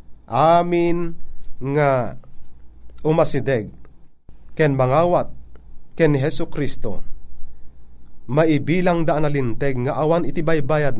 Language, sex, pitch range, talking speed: Filipino, male, 95-150 Hz, 75 wpm